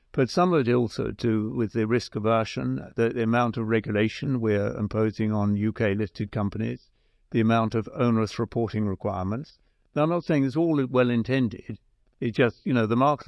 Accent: British